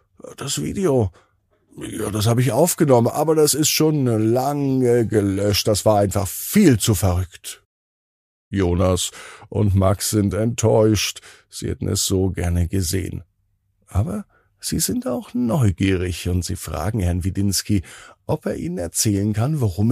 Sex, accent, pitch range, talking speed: male, German, 95-125 Hz, 140 wpm